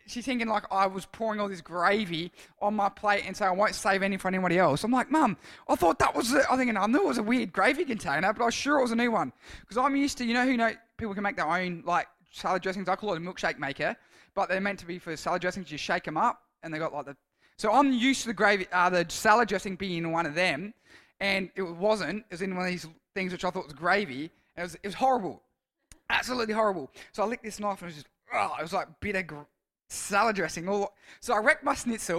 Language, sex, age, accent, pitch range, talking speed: English, male, 20-39, Australian, 180-235 Hz, 270 wpm